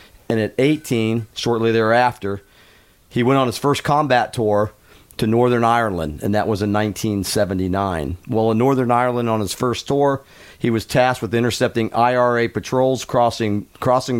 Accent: American